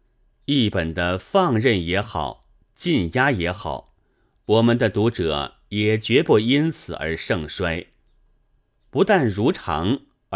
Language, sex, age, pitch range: Chinese, male, 30-49, 85-130 Hz